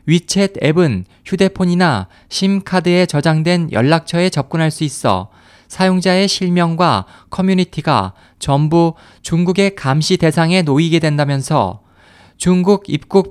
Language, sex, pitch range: Korean, male, 120-180 Hz